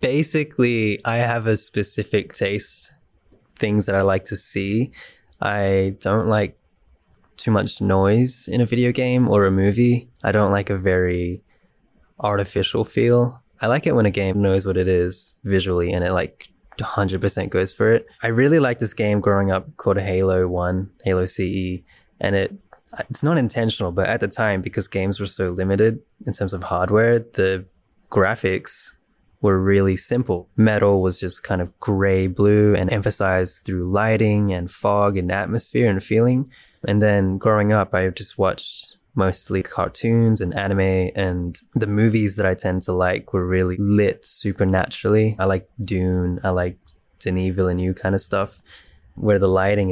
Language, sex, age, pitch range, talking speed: English, male, 20-39, 95-110 Hz, 165 wpm